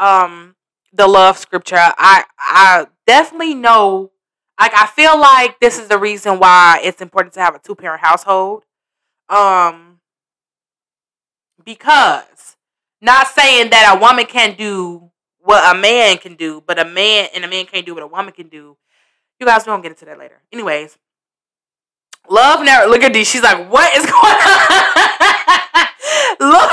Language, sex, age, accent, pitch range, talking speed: English, female, 20-39, American, 175-220 Hz, 160 wpm